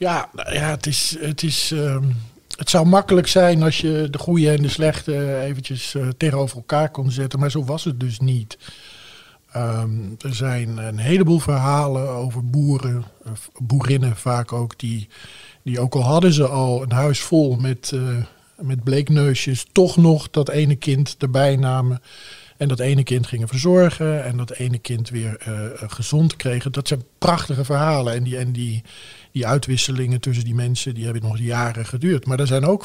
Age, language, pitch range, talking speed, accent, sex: 50-69, Dutch, 120-145 Hz, 170 wpm, Dutch, male